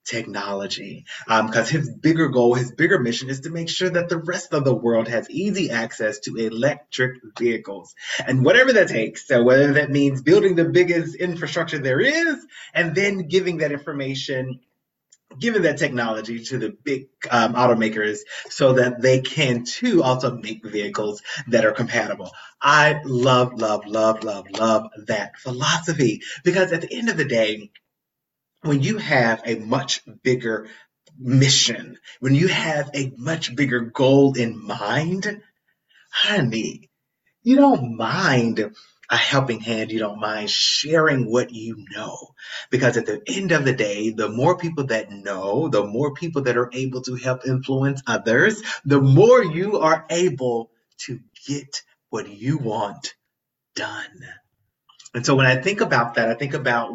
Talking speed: 160 wpm